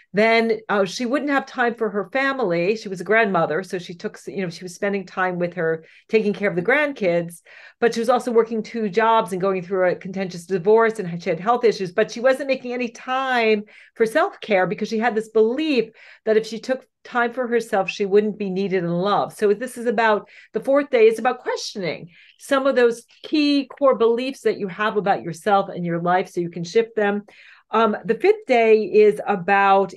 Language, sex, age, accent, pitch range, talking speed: English, female, 40-59, American, 195-240 Hz, 215 wpm